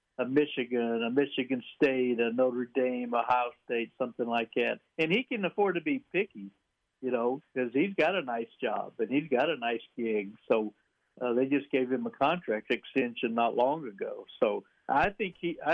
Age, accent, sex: 60-79, American, male